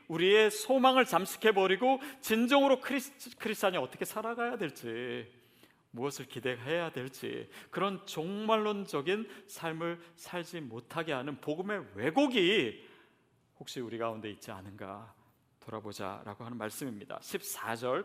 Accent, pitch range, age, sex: native, 135-210 Hz, 40-59, male